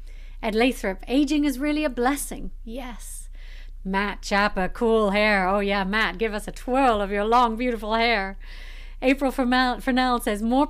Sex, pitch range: female, 190-265 Hz